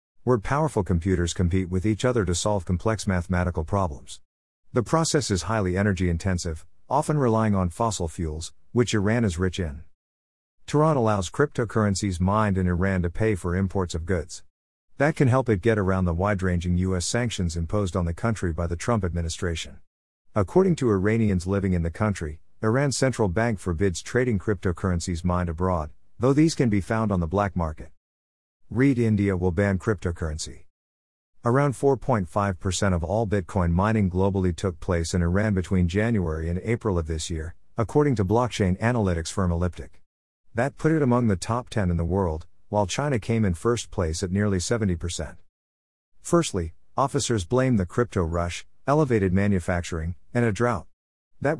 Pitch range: 85-110 Hz